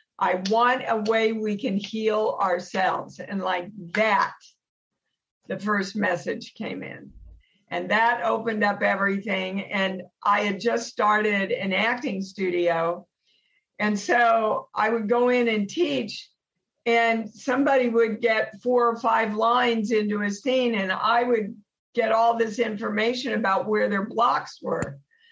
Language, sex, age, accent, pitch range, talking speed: English, female, 50-69, American, 200-245 Hz, 140 wpm